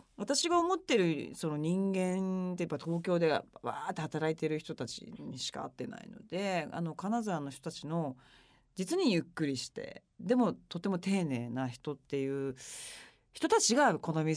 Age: 40-59